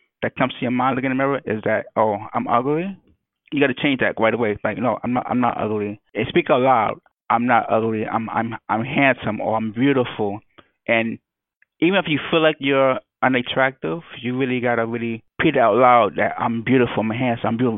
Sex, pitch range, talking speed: male, 110-130 Hz, 220 wpm